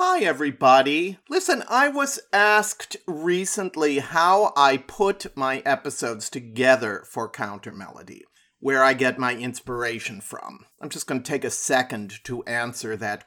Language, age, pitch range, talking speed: English, 40-59, 120-150 Hz, 145 wpm